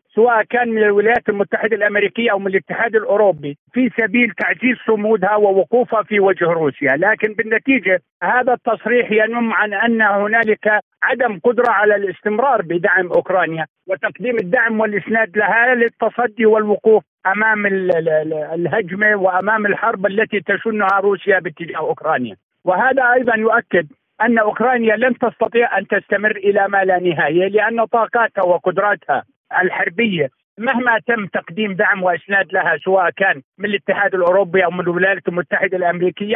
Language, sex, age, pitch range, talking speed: Arabic, male, 50-69, 185-225 Hz, 135 wpm